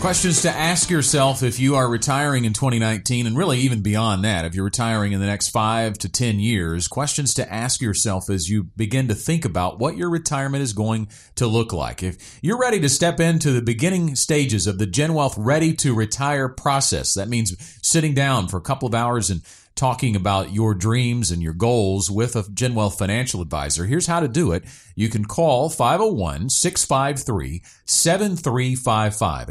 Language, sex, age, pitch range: English, male, 40-59, 100-135 Hz